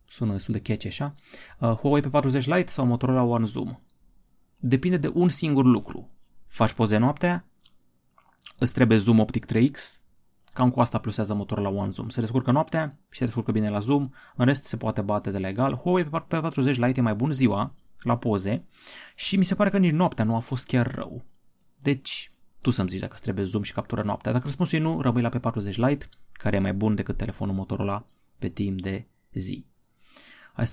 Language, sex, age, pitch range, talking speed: Romanian, male, 30-49, 110-140 Hz, 205 wpm